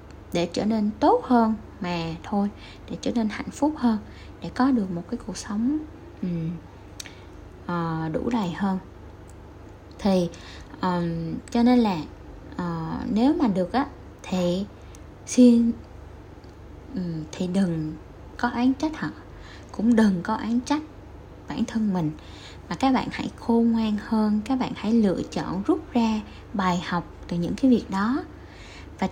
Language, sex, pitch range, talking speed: Vietnamese, female, 175-245 Hz, 155 wpm